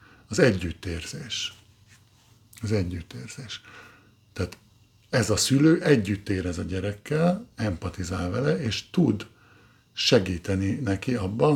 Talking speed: 100 wpm